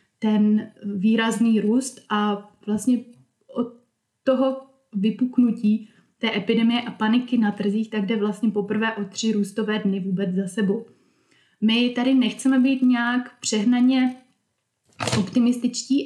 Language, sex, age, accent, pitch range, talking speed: Czech, female, 20-39, native, 210-245 Hz, 120 wpm